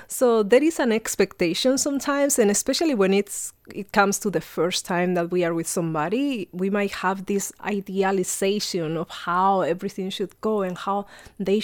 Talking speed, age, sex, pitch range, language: 175 wpm, 30-49, female, 185-230 Hz, English